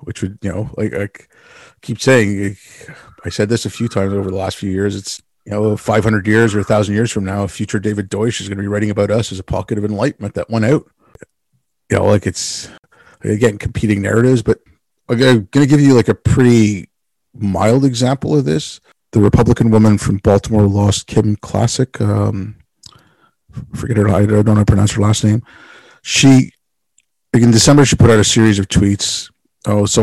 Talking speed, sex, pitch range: 200 wpm, male, 100-115 Hz